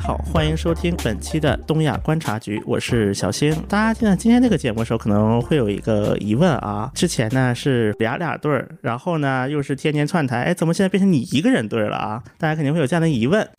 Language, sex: Chinese, male